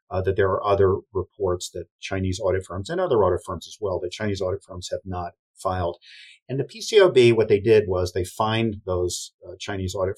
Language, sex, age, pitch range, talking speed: English, male, 40-59, 90-140 Hz, 210 wpm